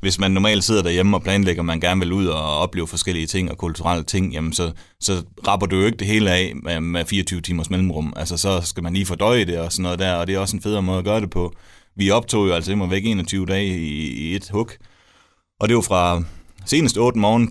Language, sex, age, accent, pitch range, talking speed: Danish, male, 30-49, native, 85-100 Hz, 255 wpm